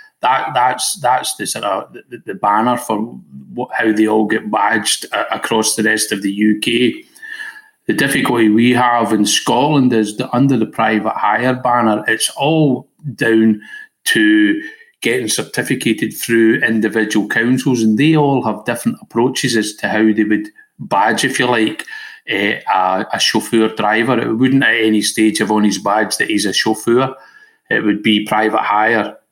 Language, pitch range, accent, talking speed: English, 105-130 Hz, British, 170 wpm